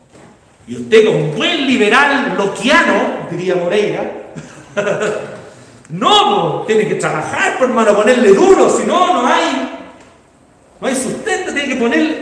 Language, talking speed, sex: Spanish, 130 wpm, male